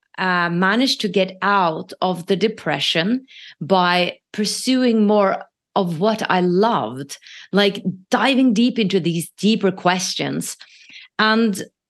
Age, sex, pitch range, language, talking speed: 30-49, female, 180-230 Hz, English, 115 wpm